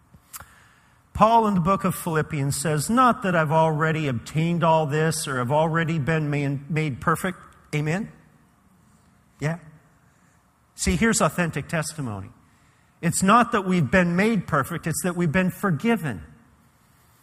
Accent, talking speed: American, 130 wpm